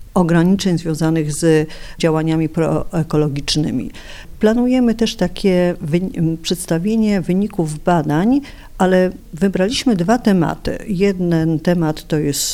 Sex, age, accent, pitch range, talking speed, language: female, 50-69, native, 160-205 Hz, 95 wpm, Polish